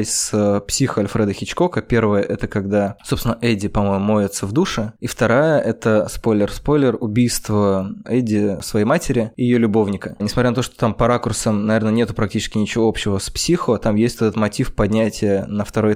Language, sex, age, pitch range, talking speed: Russian, male, 20-39, 105-120 Hz, 170 wpm